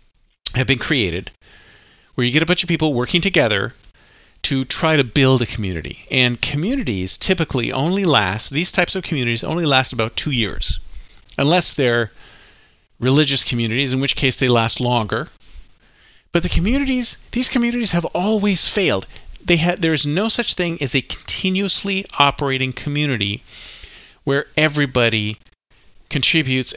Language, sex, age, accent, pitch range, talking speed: English, male, 40-59, American, 115-155 Hz, 145 wpm